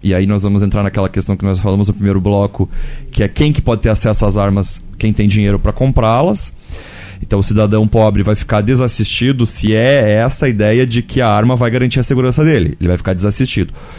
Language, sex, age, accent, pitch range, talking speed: Portuguese, male, 20-39, Brazilian, 105-130 Hz, 220 wpm